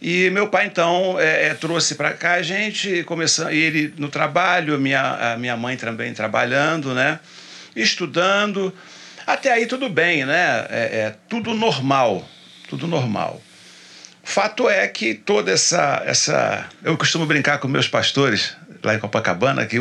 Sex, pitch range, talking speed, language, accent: male, 110-165 Hz, 150 wpm, Portuguese, Brazilian